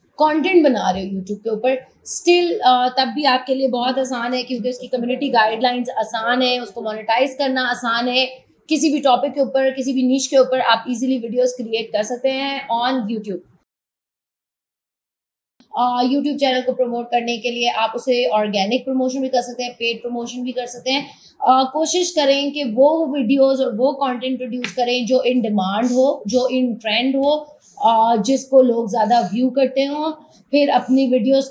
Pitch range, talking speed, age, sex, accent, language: 235-270 Hz, 120 wpm, 20-39, female, Indian, English